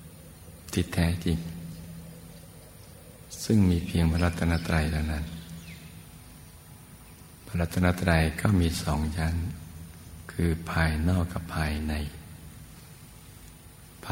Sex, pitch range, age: male, 80-85 Hz, 60-79